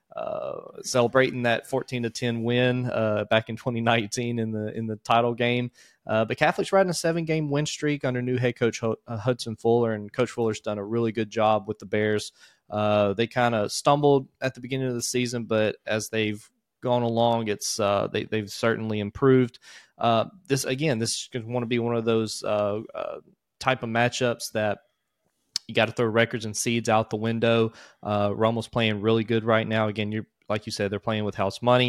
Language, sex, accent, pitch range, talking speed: English, male, American, 105-120 Hz, 215 wpm